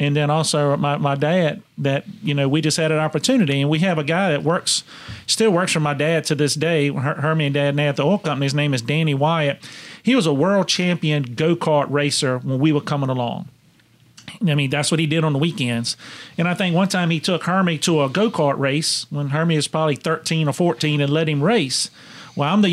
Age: 40-59